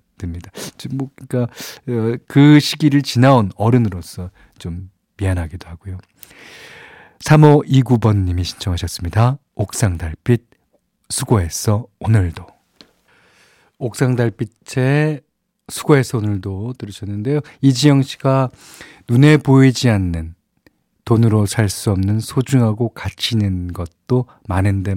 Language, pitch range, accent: Korean, 100-135 Hz, native